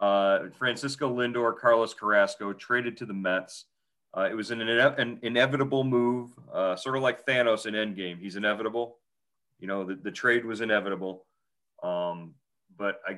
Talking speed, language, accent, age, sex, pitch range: 165 wpm, English, American, 30-49, male, 95-120 Hz